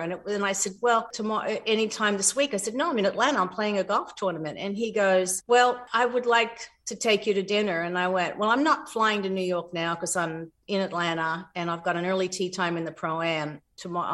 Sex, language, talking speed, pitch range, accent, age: female, English, 250 wpm, 185-235 Hz, American, 50-69